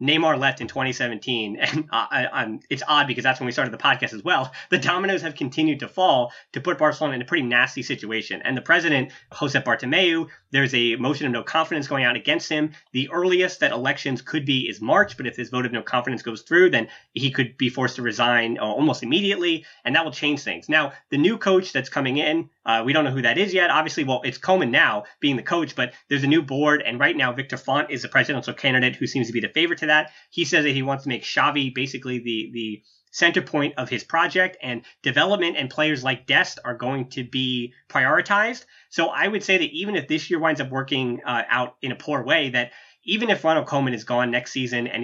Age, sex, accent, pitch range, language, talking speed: 20-39, male, American, 125-160 Hz, English, 240 wpm